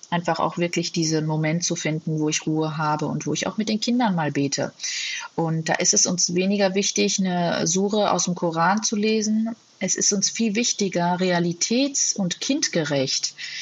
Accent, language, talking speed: German, German, 185 wpm